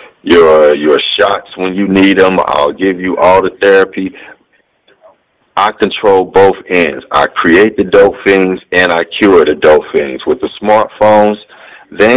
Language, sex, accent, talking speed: English, male, American, 160 wpm